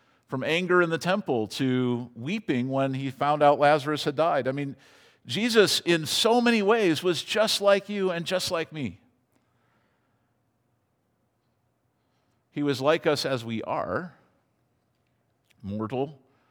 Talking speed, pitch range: 135 wpm, 120-150 Hz